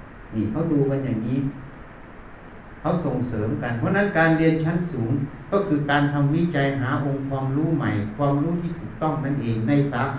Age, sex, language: 60-79, male, Thai